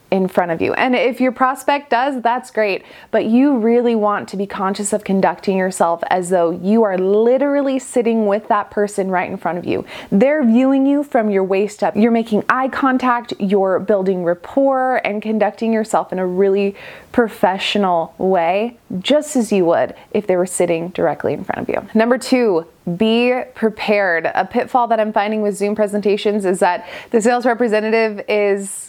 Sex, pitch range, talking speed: female, 195-240 Hz, 185 wpm